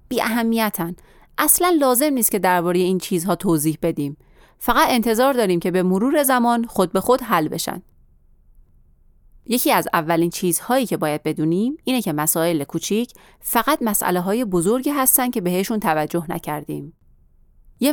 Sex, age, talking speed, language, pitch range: female, 30-49, 145 wpm, Persian, 165-235 Hz